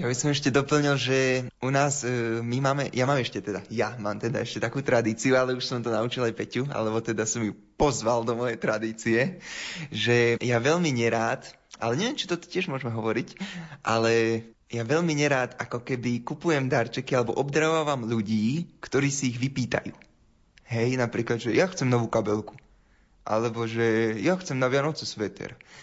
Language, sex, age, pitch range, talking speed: Slovak, male, 20-39, 115-145 Hz, 175 wpm